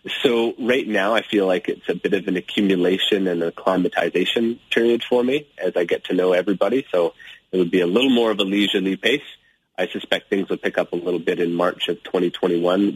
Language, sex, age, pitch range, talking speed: English, male, 30-49, 85-105 Hz, 220 wpm